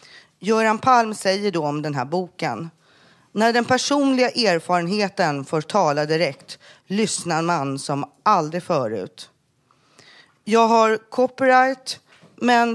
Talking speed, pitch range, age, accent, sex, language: 115 wpm, 180-230 Hz, 40-59, native, female, Swedish